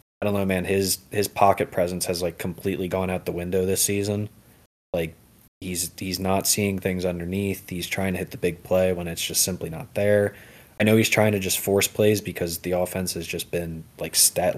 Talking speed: 220 wpm